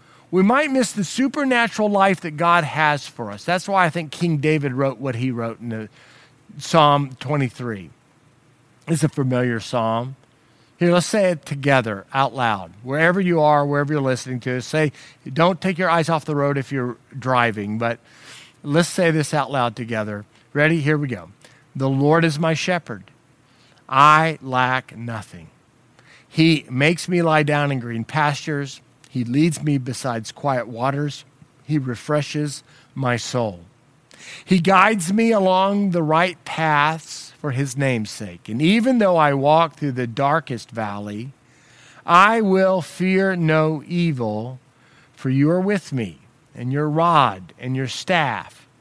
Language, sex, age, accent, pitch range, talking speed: English, male, 50-69, American, 125-165 Hz, 155 wpm